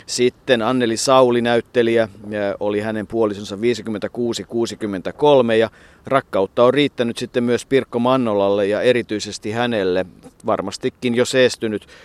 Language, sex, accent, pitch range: Finnish, male, native, 105-125 Hz